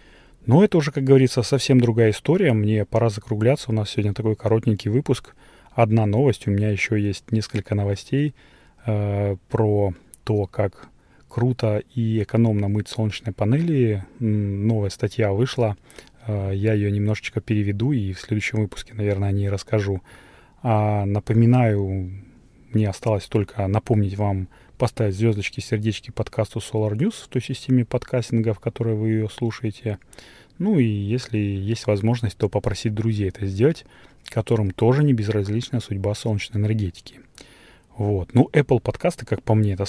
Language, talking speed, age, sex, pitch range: Russian, 145 wpm, 20-39, male, 100-120 Hz